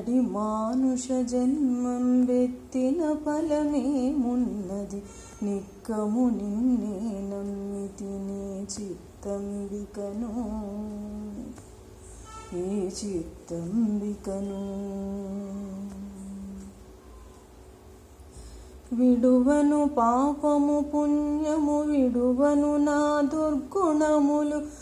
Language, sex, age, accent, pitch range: Telugu, female, 30-49, native, 245-310 Hz